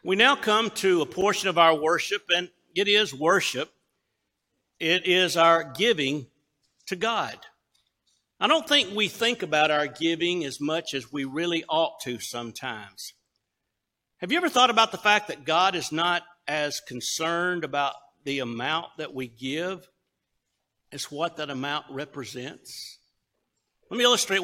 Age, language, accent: 60-79, English, American